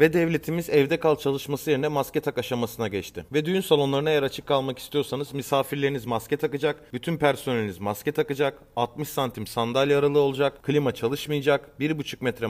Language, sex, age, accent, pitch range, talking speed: Turkish, male, 30-49, native, 135-160 Hz, 160 wpm